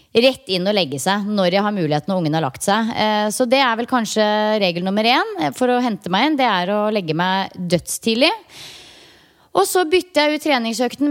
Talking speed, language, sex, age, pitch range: 210 wpm, English, female, 20-39, 210-280 Hz